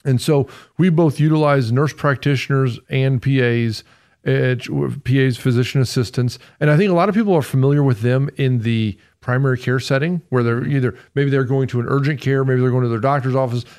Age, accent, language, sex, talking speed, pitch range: 40-59, American, English, male, 200 wpm, 125-150 Hz